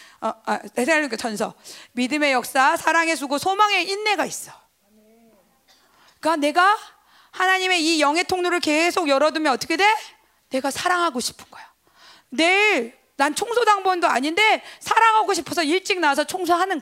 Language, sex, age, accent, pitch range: Korean, female, 40-59, native, 295-410 Hz